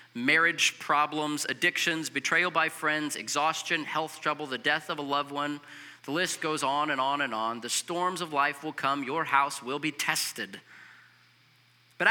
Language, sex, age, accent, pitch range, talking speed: English, male, 40-59, American, 145-195 Hz, 175 wpm